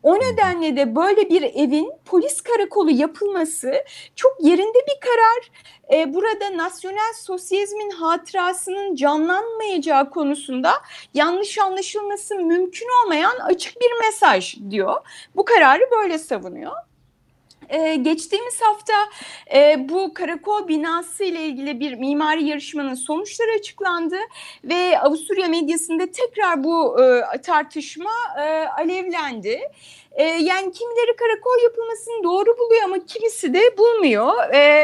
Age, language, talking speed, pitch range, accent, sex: 30-49, Turkish, 115 wpm, 300-415 Hz, native, female